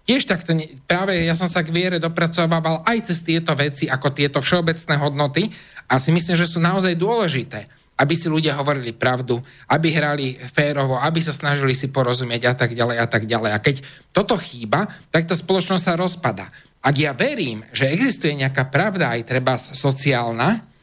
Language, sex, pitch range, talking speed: Slovak, male, 130-180 Hz, 180 wpm